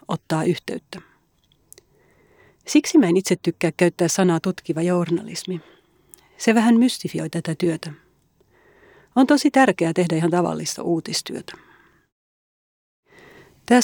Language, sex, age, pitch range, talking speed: Finnish, female, 40-59, 165-215 Hz, 105 wpm